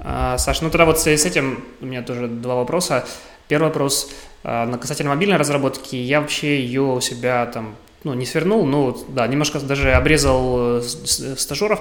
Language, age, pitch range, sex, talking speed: Russian, 20-39, 120-145 Hz, male, 165 wpm